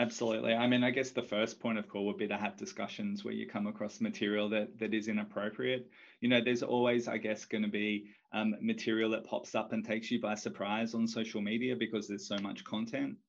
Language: English